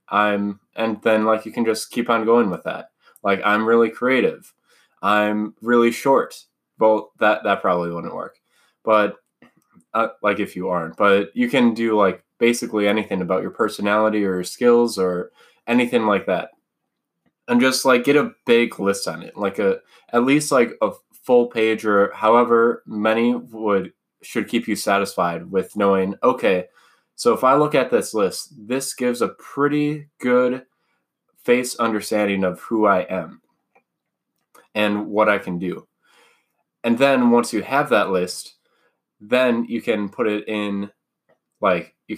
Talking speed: 160 wpm